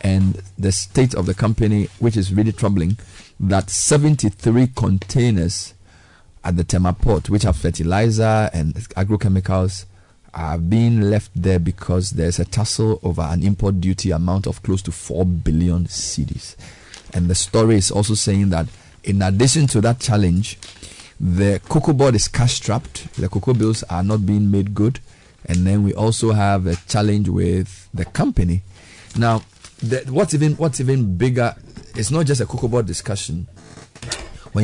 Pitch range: 90-115 Hz